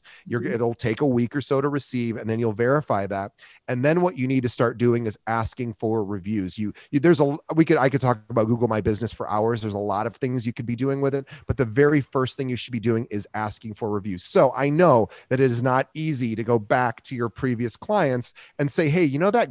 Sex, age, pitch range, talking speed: male, 30-49, 115-140 Hz, 260 wpm